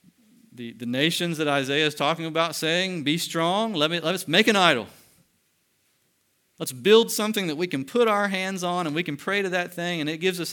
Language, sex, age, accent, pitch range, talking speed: English, male, 40-59, American, 125-170 Hz, 215 wpm